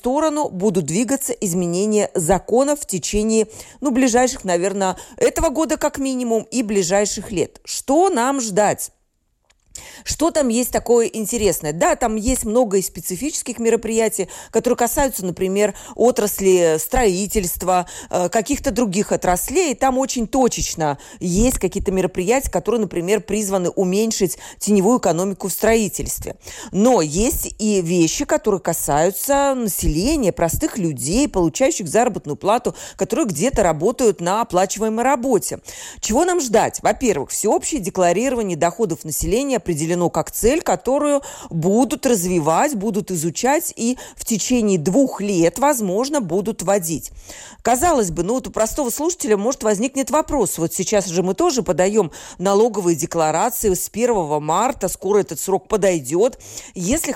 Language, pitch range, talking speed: Russian, 185-255 Hz, 125 wpm